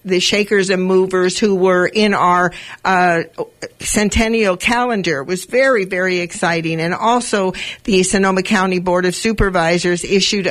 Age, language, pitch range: 50-69, English, 175-210 Hz